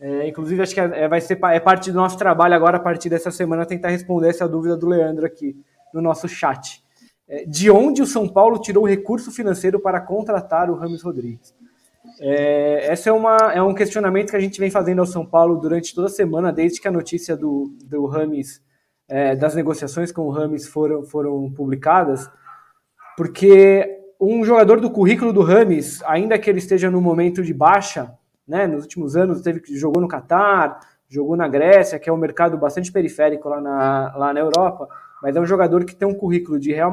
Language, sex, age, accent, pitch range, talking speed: Portuguese, male, 20-39, Brazilian, 155-200 Hz, 200 wpm